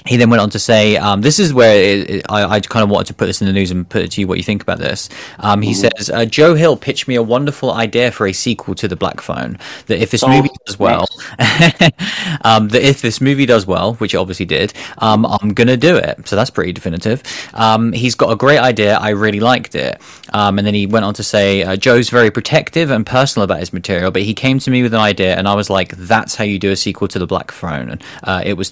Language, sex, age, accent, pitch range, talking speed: English, male, 20-39, British, 100-120 Hz, 270 wpm